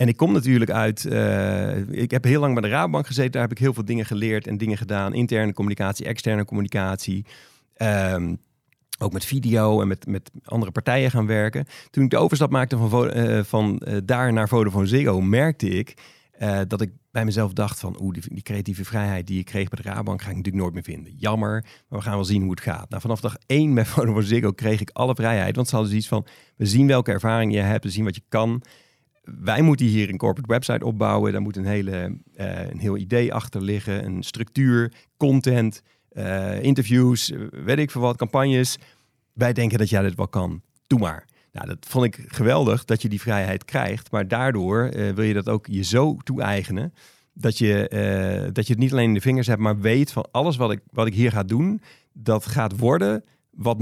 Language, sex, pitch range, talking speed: Dutch, male, 100-125 Hz, 215 wpm